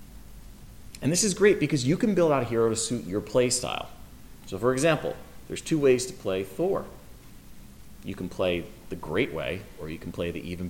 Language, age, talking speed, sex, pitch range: English, 30-49, 210 wpm, male, 95-130 Hz